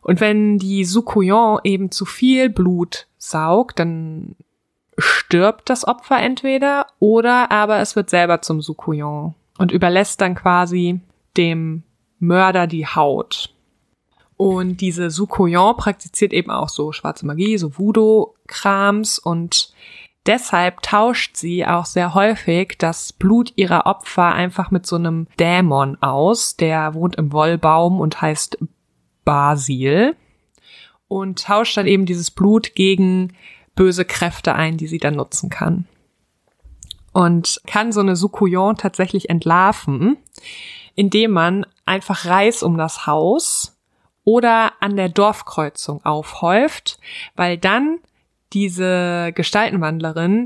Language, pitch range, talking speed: German, 170-210 Hz, 120 wpm